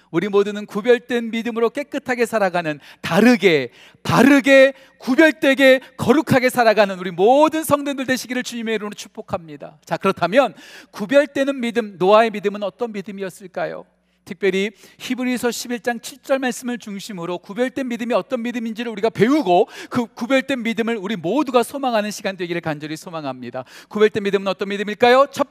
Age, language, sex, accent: 40-59, Korean, male, native